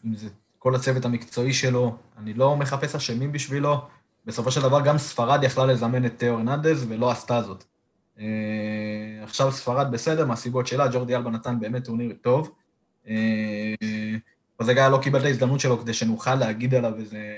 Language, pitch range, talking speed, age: Hebrew, 115-140 Hz, 155 wpm, 20-39